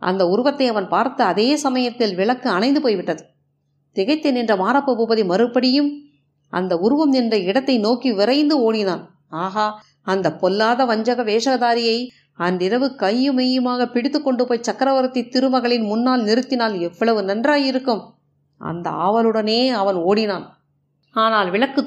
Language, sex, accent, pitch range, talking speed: Tamil, female, native, 210-260 Hz, 115 wpm